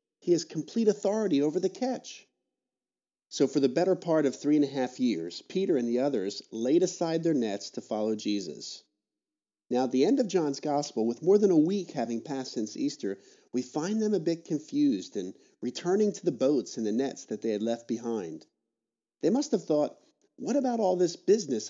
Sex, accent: male, American